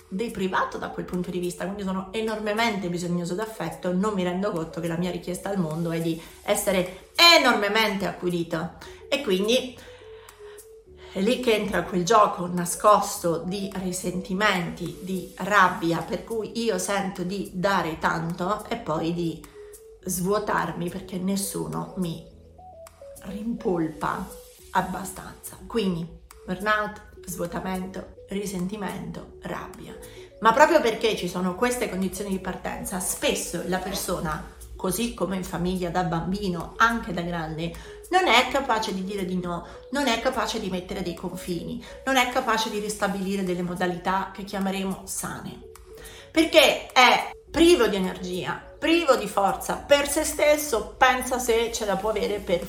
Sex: female